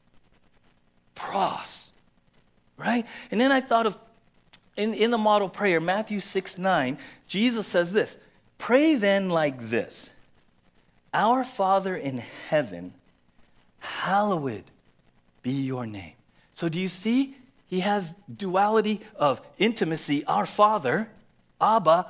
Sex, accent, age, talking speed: male, American, 40-59, 115 wpm